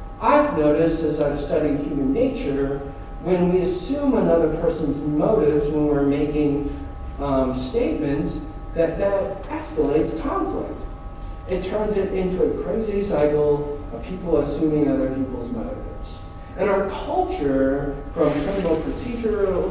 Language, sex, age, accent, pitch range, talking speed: English, male, 40-59, American, 145-210 Hz, 120 wpm